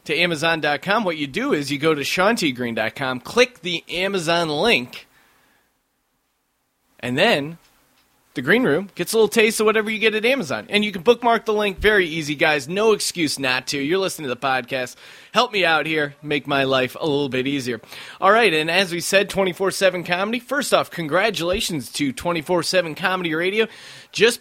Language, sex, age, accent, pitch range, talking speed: English, male, 30-49, American, 145-185 Hz, 180 wpm